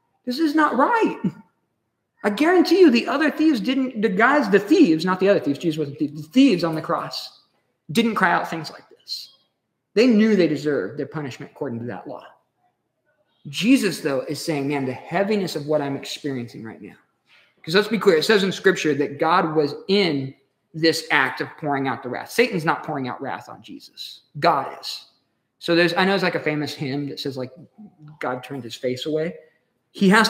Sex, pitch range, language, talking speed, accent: male, 140-195 Hz, English, 205 wpm, American